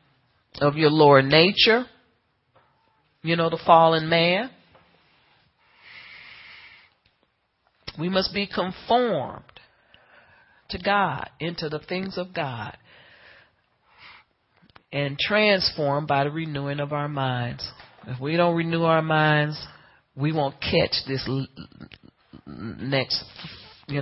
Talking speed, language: 100 wpm, English